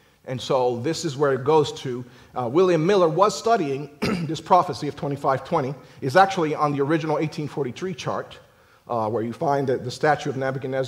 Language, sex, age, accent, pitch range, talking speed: English, male, 40-59, American, 135-180 Hz, 180 wpm